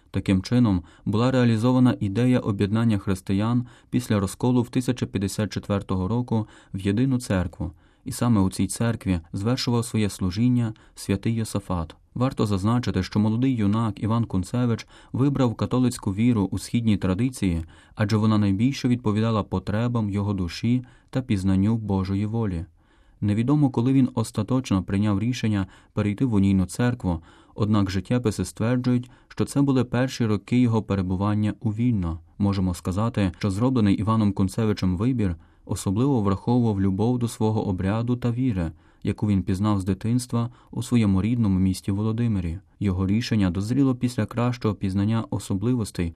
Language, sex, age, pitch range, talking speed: Ukrainian, male, 30-49, 95-120 Hz, 135 wpm